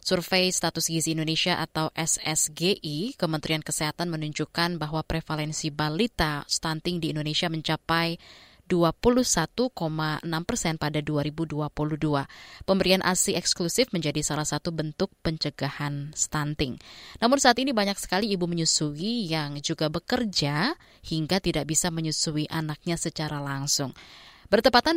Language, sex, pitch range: Indonesian, female, 155-180 Hz